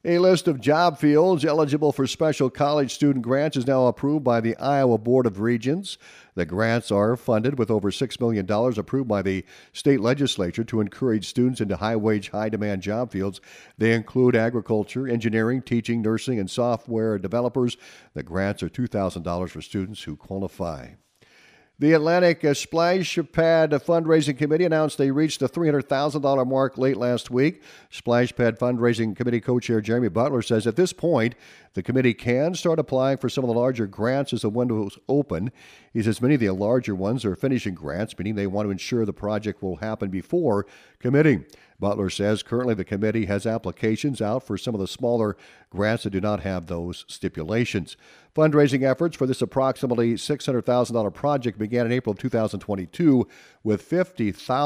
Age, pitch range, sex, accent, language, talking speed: 50-69, 100-130 Hz, male, American, English, 165 wpm